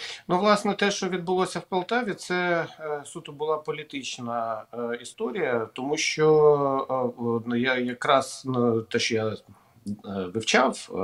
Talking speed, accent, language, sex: 130 wpm, native, Ukrainian, male